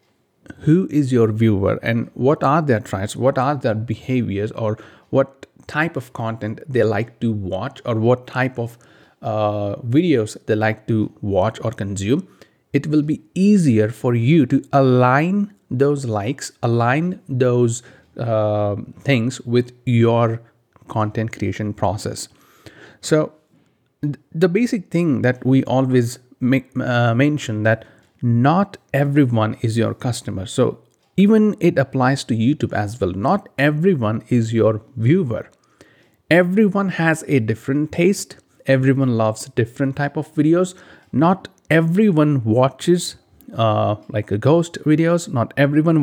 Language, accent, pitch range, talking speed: English, Indian, 115-150 Hz, 135 wpm